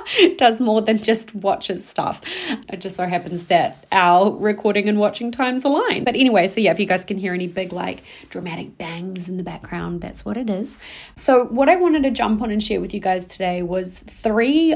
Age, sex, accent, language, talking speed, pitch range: 30-49, female, Australian, English, 215 wpm, 185-240 Hz